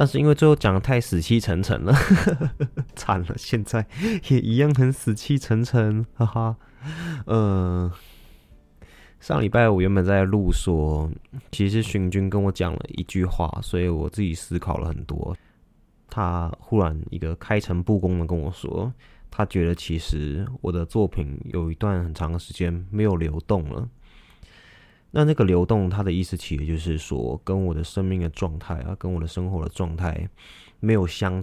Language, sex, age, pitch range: Chinese, male, 20-39, 85-110 Hz